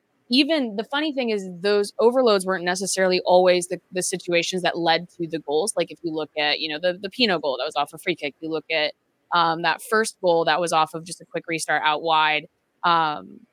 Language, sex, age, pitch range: English, female, 20-39, 160-195 Hz